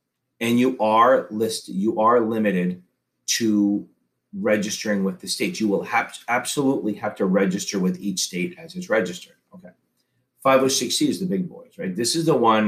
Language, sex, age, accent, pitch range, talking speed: English, male, 30-49, American, 100-130 Hz, 175 wpm